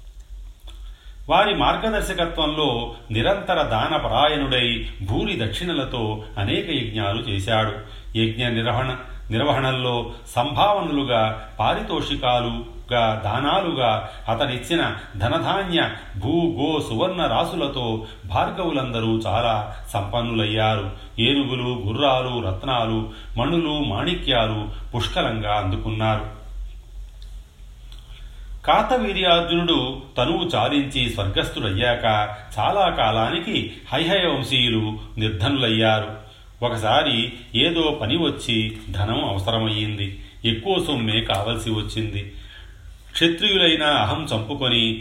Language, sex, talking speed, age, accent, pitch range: Telugu, male, 65 wpm, 40-59, native, 105-140 Hz